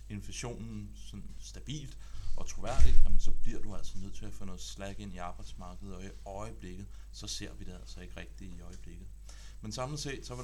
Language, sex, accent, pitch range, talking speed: Danish, male, native, 95-110 Hz, 200 wpm